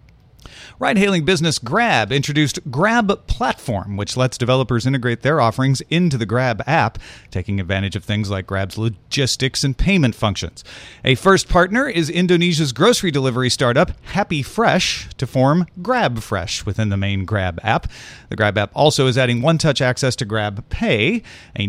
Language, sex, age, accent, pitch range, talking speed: English, male, 40-59, American, 110-150 Hz, 155 wpm